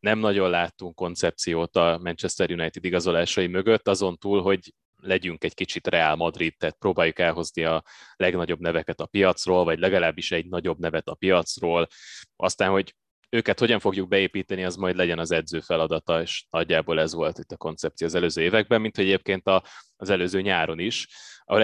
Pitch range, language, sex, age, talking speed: 85-95 Hz, Hungarian, male, 20-39, 170 wpm